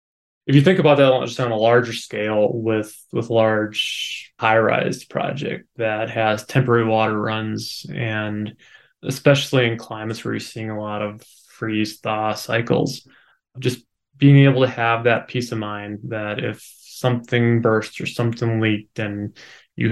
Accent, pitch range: American, 110-125 Hz